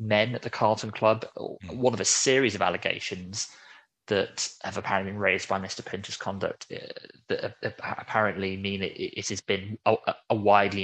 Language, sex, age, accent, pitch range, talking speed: English, male, 20-39, British, 100-115 Hz, 175 wpm